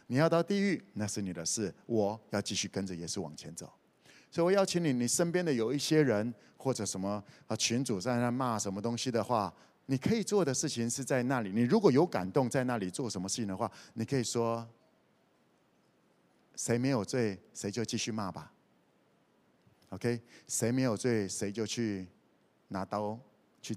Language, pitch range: Chinese, 105-130 Hz